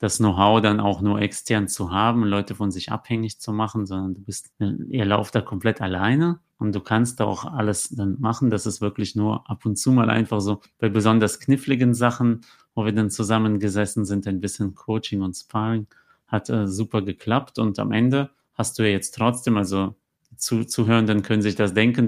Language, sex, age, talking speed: German, male, 30-49, 195 wpm